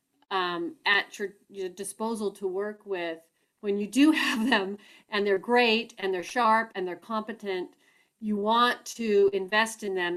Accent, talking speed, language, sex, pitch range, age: American, 165 wpm, English, female, 190-230 Hz, 40-59